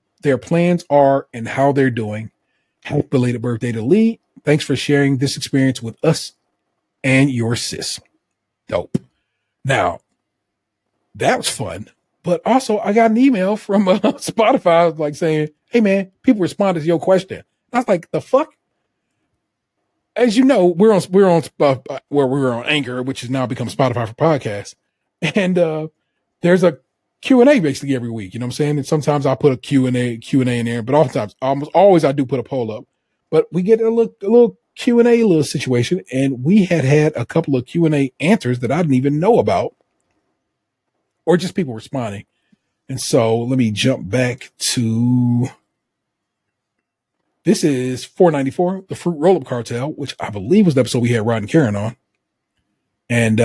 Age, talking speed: 30-49, 190 wpm